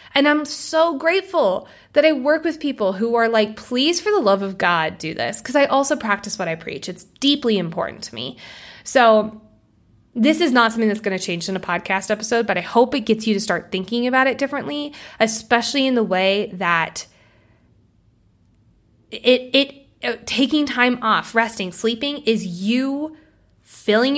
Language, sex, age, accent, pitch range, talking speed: English, female, 20-39, American, 190-280 Hz, 180 wpm